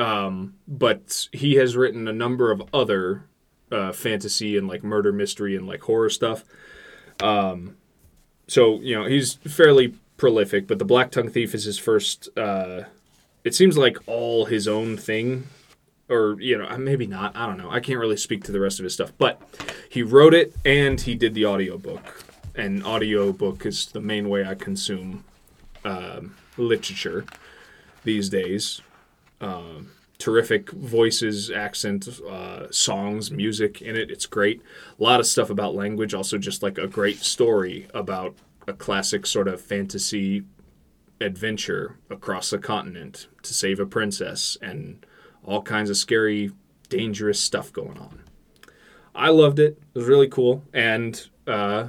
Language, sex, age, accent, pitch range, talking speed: English, male, 20-39, American, 100-125 Hz, 160 wpm